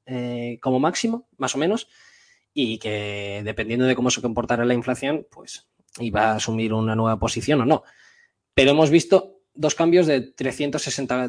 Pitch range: 115-145 Hz